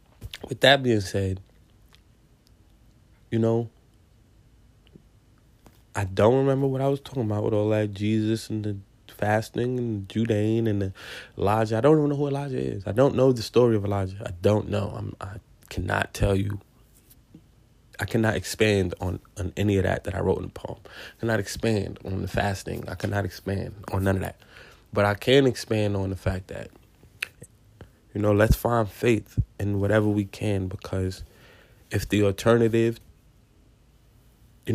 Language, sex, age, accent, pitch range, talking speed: English, male, 20-39, American, 100-115 Hz, 165 wpm